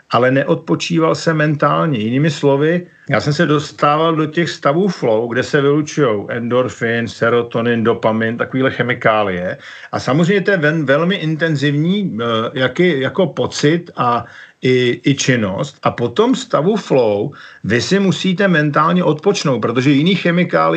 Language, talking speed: Slovak, 130 wpm